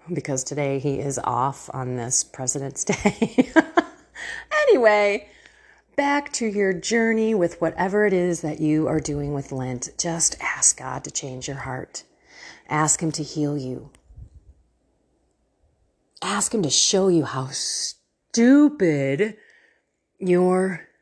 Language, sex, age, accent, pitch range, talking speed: English, female, 40-59, American, 145-230 Hz, 125 wpm